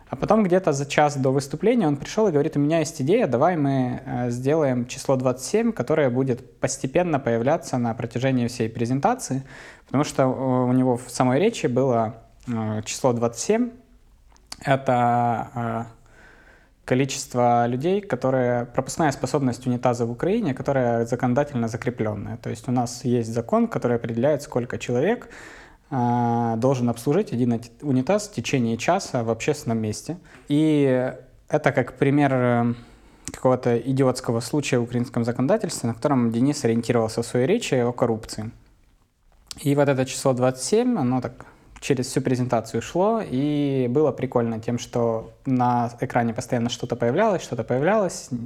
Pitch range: 120-140 Hz